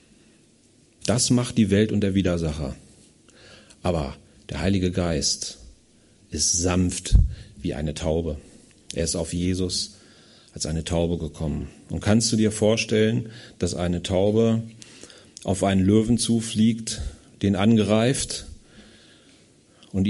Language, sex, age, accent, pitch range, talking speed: German, male, 40-59, German, 95-120 Hz, 115 wpm